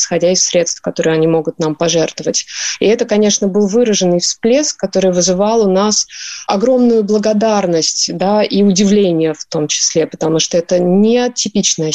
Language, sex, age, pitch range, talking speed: Russian, female, 20-39, 180-220 Hz, 150 wpm